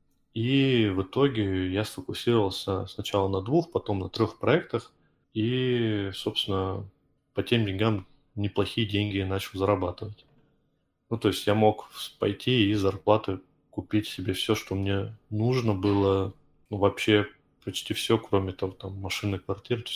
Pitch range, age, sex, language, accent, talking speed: 95-110 Hz, 20-39, male, Russian, native, 140 wpm